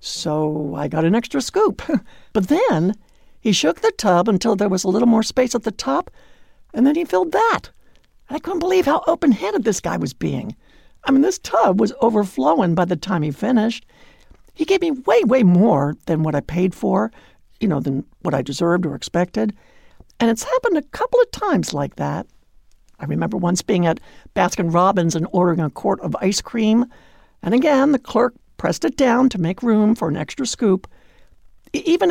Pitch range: 170-255 Hz